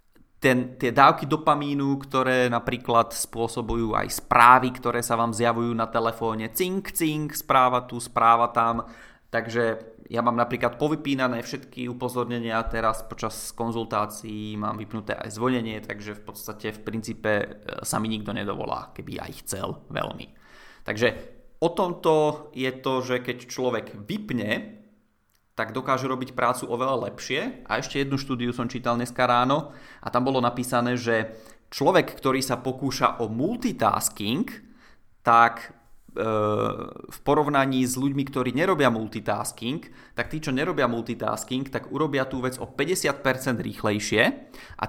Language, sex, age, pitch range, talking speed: Czech, male, 20-39, 115-130 Hz, 140 wpm